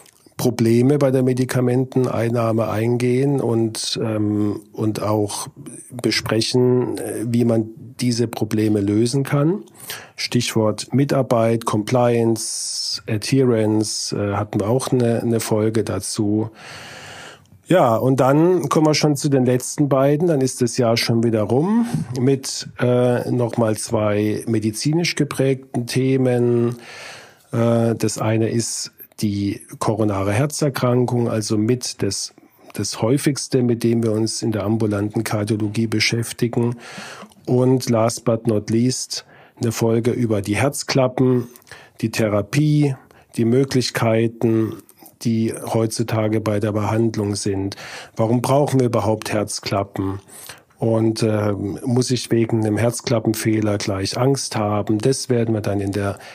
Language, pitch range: German, 110-125 Hz